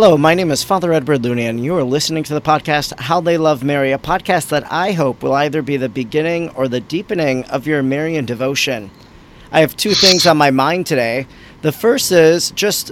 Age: 40-59